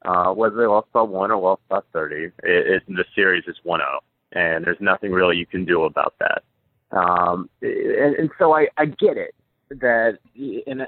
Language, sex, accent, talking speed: English, male, American, 200 wpm